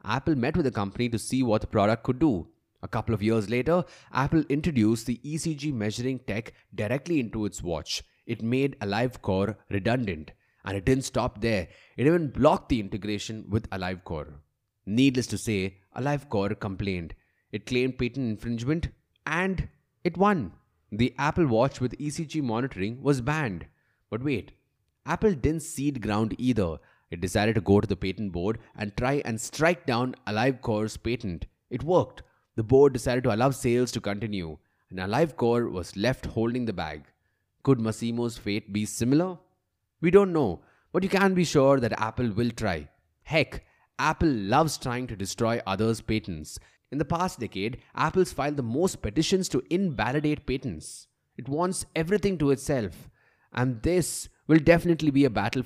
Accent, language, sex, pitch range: Indian, English, male, 105-140 Hz